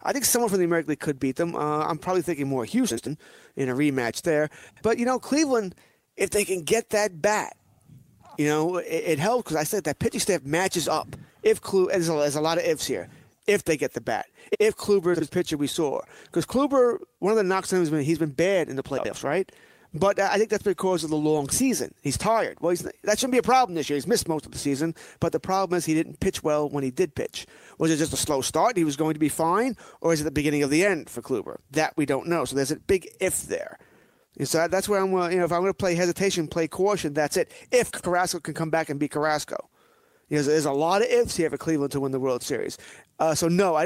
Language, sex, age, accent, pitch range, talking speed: English, male, 30-49, American, 145-190 Hz, 265 wpm